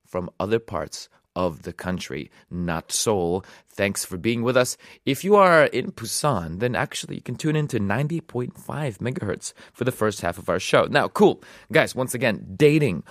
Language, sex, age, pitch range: Korean, male, 30-49, 95-135 Hz